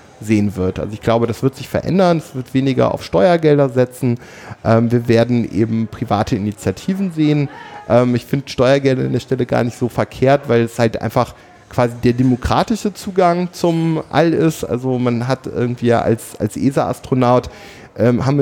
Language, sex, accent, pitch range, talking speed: German, male, German, 120-150 Hz, 175 wpm